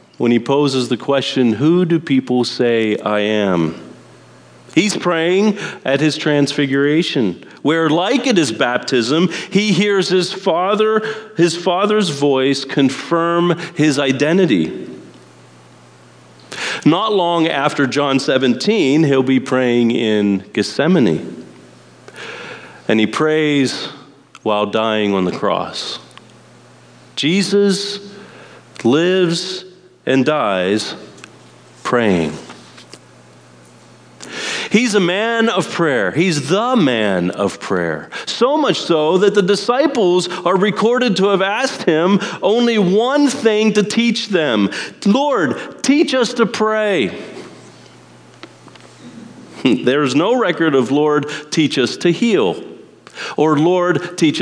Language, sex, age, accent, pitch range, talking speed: English, male, 40-59, American, 135-200 Hz, 110 wpm